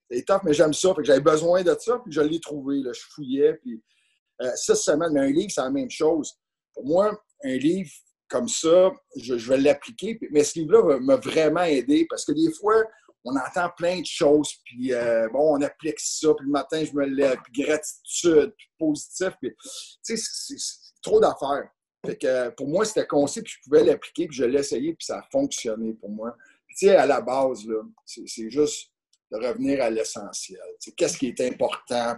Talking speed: 210 wpm